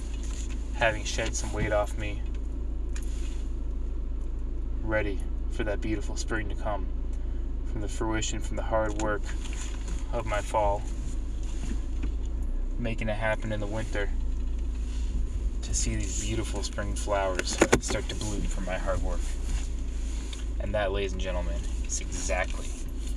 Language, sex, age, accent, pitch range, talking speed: English, male, 20-39, American, 65-95 Hz, 125 wpm